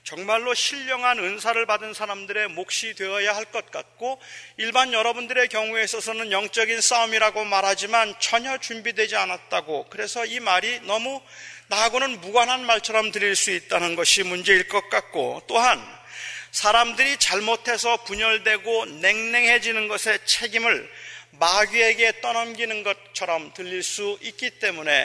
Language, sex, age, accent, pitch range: Korean, male, 40-59, native, 205-235 Hz